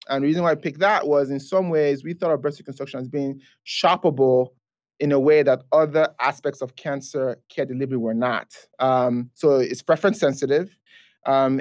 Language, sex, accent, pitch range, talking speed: English, male, Nigerian, 135-175 Hz, 190 wpm